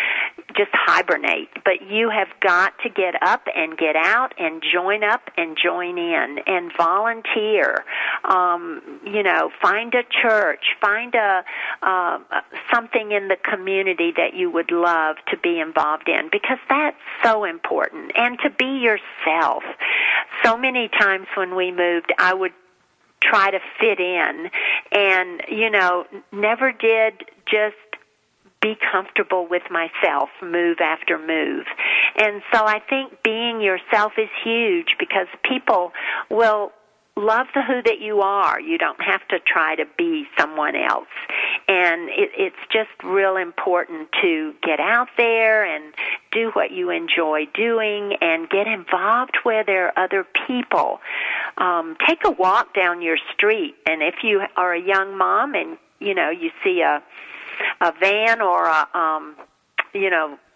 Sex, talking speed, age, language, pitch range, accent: female, 150 wpm, 50-69, English, 185-260 Hz, American